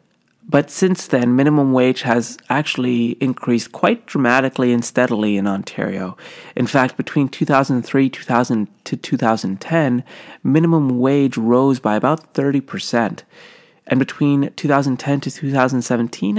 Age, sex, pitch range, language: 30-49, male, 115-140 Hz, English